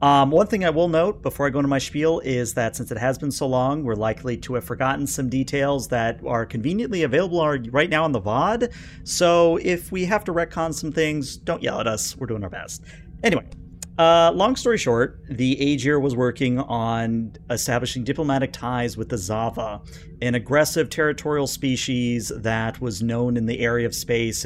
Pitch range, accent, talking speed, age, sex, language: 115-140 Hz, American, 195 wpm, 40-59, male, English